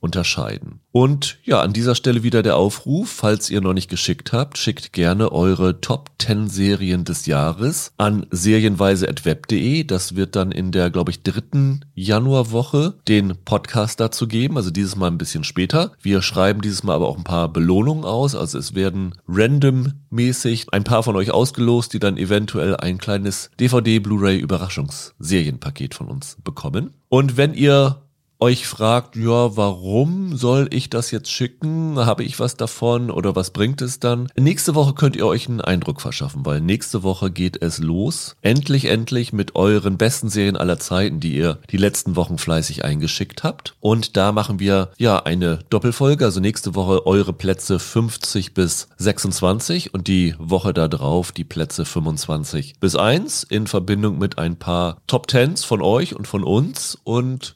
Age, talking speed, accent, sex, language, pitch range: 40-59, 165 wpm, German, male, German, 95-125 Hz